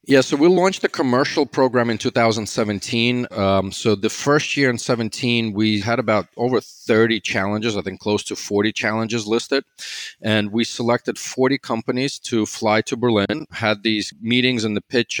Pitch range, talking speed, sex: 105-125 Hz, 175 wpm, male